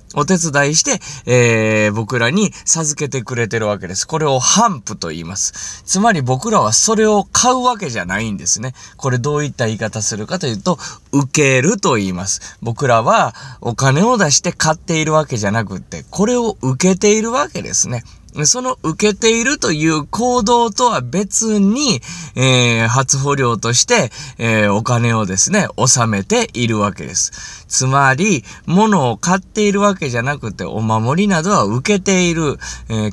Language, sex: Japanese, male